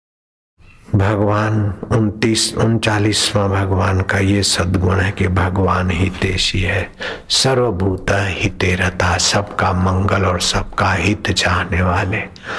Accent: native